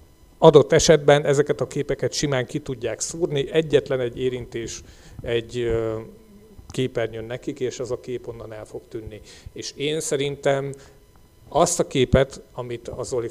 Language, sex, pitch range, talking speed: Hungarian, male, 125-175 Hz, 145 wpm